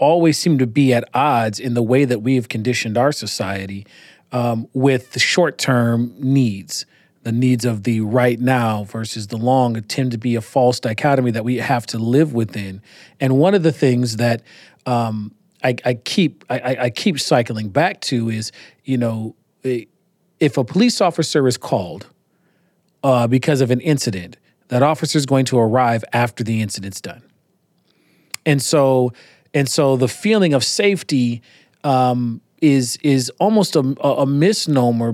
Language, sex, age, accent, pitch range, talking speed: English, male, 40-59, American, 120-145 Hz, 160 wpm